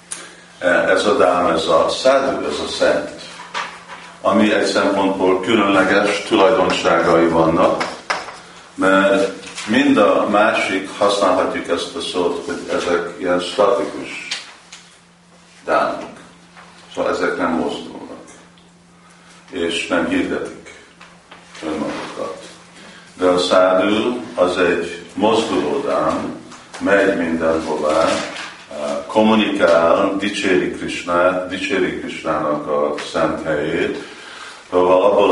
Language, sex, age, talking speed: Hungarian, male, 50-69, 90 wpm